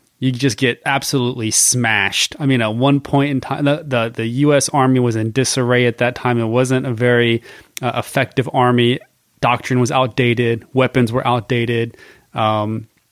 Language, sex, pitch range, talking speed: English, male, 125-150 Hz, 170 wpm